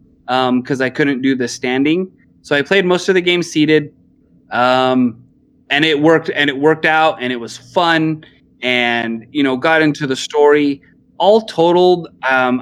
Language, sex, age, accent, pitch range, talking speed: English, male, 20-39, American, 125-155 Hz, 175 wpm